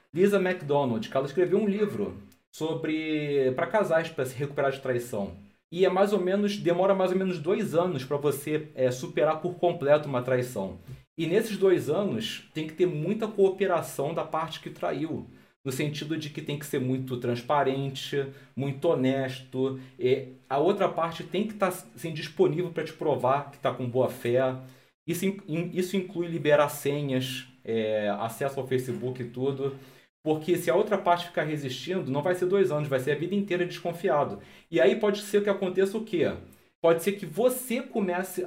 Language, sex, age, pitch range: Portuguese, male, 40-59, 135-185 Hz